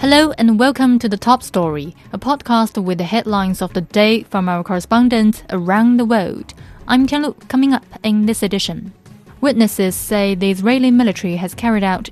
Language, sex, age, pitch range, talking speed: English, female, 20-39, 185-225 Hz, 180 wpm